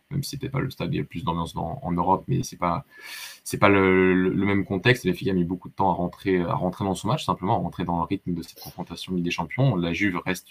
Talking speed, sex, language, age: 315 wpm, male, French, 20-39